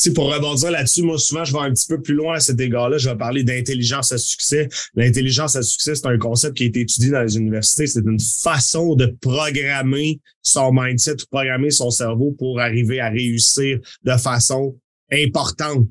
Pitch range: 125-160 Hz